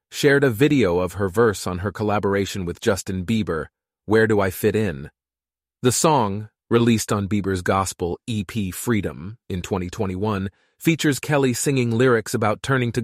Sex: male